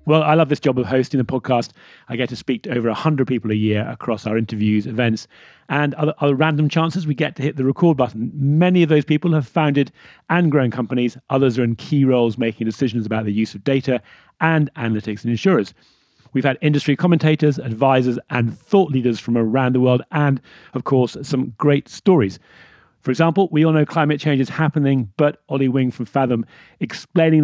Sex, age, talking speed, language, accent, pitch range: male, 40-59, 205 wpm, English, British, 115-150 Hz